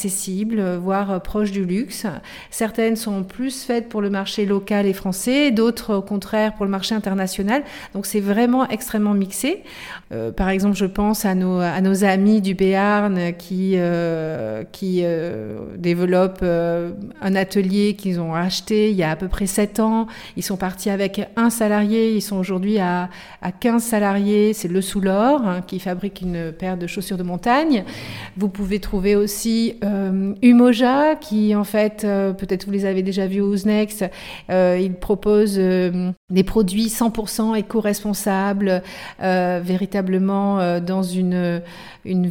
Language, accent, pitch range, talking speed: French, French, 185-210 Hz, 160 wpm